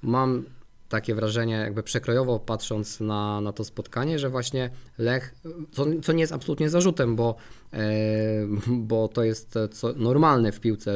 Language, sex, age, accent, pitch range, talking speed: Polish, male, 20-39, native, 100-120 Hz, 150 wpm